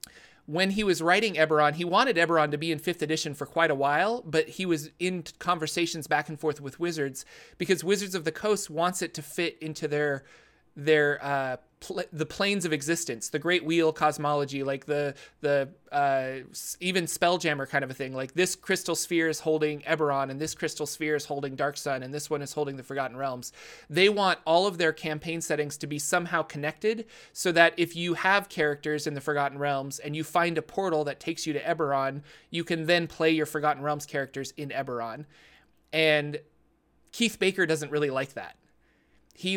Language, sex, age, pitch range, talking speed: English, male, 30-49, 145-170 Hz, 195 wpm